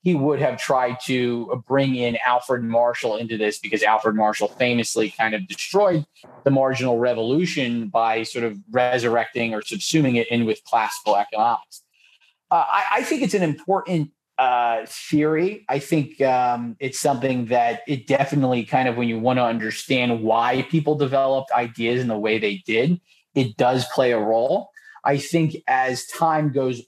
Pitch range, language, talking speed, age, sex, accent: 115-145 Hz, English, 165 wpm, 30-49, male, American